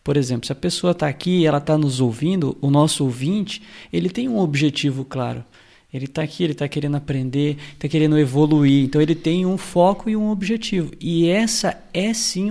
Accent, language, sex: Brazilian, Portuguese, male